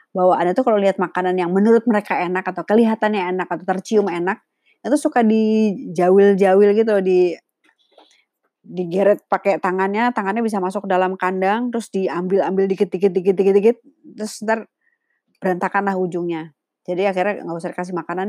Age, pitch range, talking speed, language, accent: 20-39, 175-215 Hz, 140 wpm, Indonesian, native